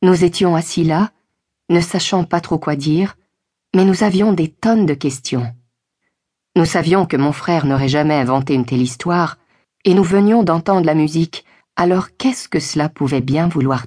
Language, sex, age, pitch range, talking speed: French, female, 40-59, 145-185 Hz, 175 wpm